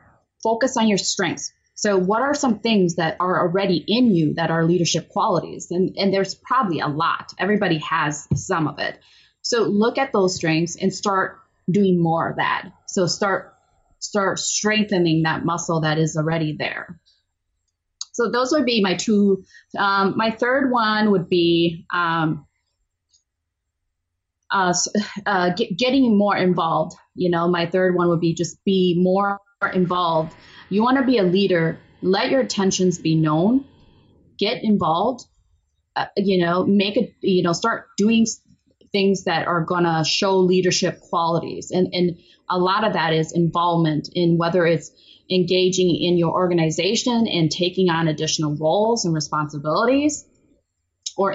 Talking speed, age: 155 wpm, 20-39